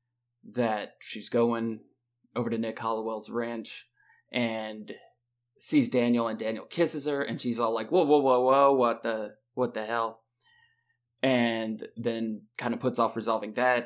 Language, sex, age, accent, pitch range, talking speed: English, male, 30-49, American, 115-130 Hz, 155 wpm